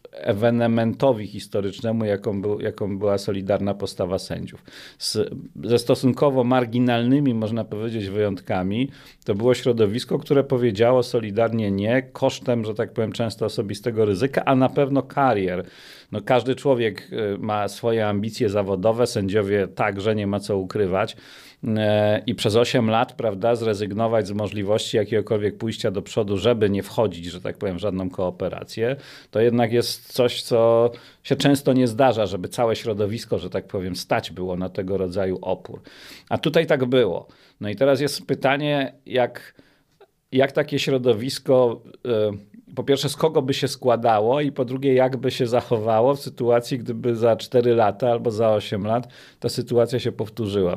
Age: 40-59